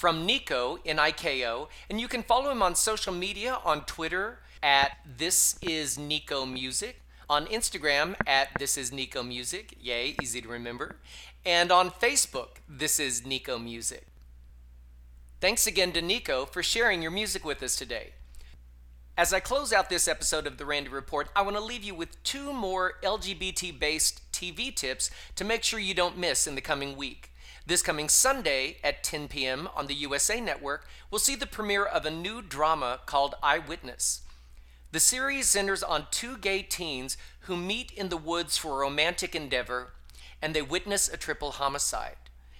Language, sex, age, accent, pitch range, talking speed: English, male, 40-59, American, 130-190 Hz, 170 wpm